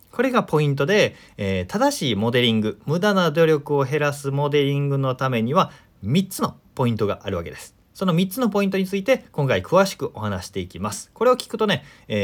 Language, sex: Japanese, male